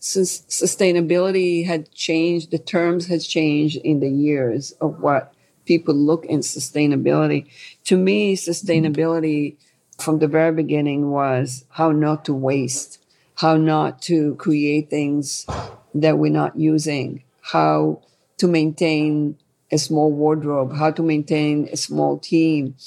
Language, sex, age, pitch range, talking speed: English, female, 50-69, 145-165 Hz, 130 wpm